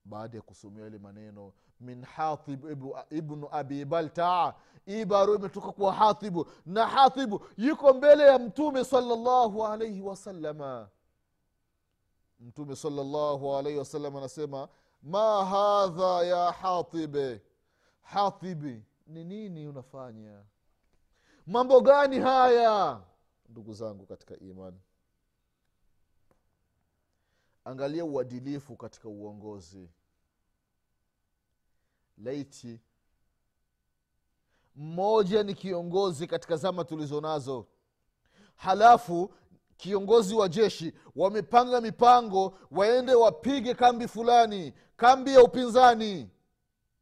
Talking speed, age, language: 85 wpm, 30-49, Swahili